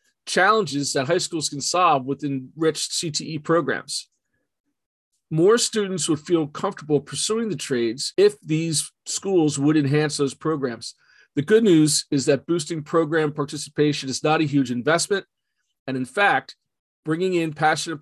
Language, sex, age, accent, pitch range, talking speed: English, male, 40-59, American, 140-175 Hz, 145 wpm